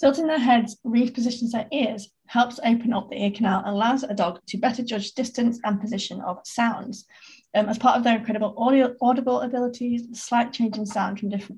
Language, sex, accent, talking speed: English, female, British, 200 wpm